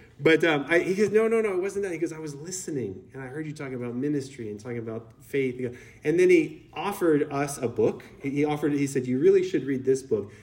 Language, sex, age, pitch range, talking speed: English, male, 30-49, 125-200 Hz, 255 wpm